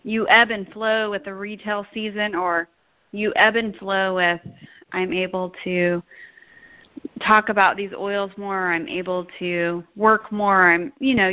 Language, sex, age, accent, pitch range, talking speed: English, female, 30-49, American, 185-220 Hz, 160 wpm